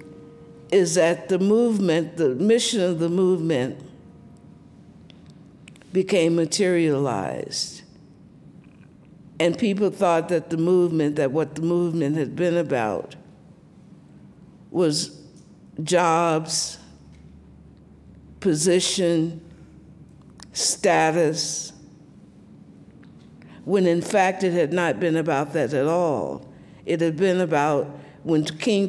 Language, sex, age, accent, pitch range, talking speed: English, female, 60-79, American, 155-180 Hz, 95 wpm